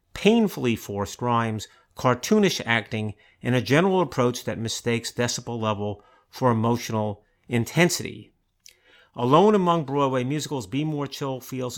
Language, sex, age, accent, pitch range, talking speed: English, male, 50-69, American, 115-150 Hz, 120 wpm